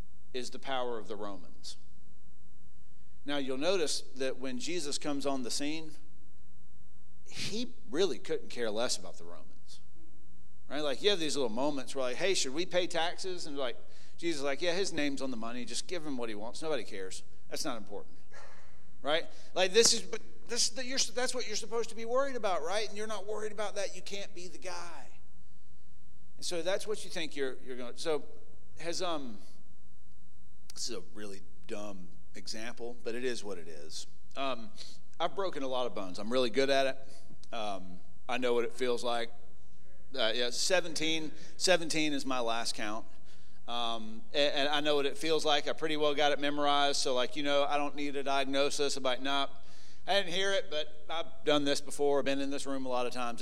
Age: 40-59